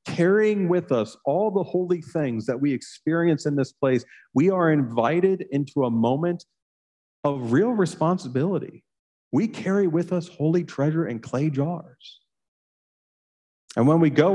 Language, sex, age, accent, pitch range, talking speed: English, male, 40-59, American, 130-175 Hz, 145 wpm